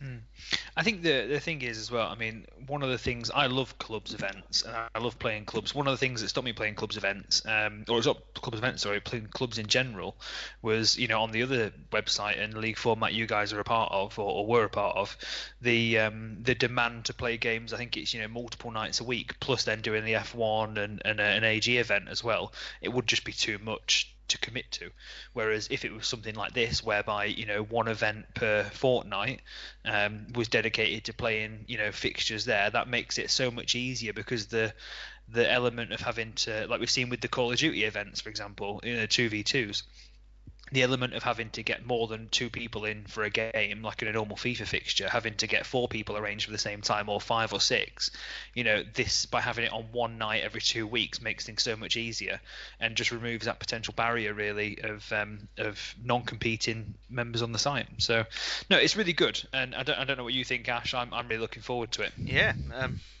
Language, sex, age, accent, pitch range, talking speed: English, male, 20-39, British, 105-120 Hz, 235 wpm